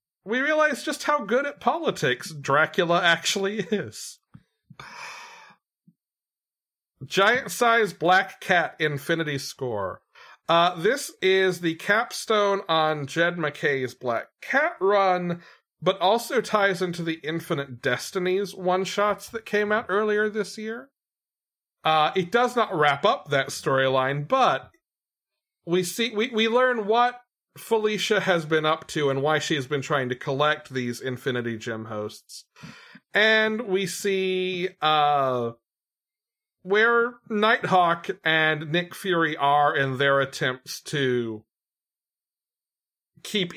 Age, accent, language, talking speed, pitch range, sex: 40-59, American, English, 125 wpm, 140-210 Hz, male